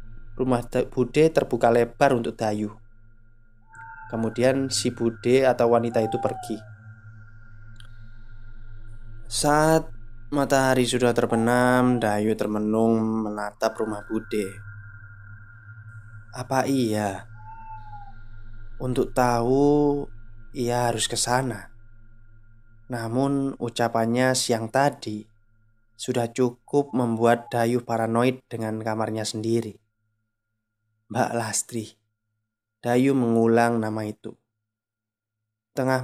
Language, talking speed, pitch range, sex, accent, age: Indonesian, 80 wpm, 110-125 Hz, male, native, 20-39